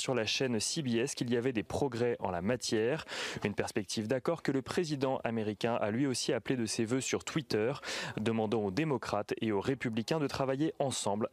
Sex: male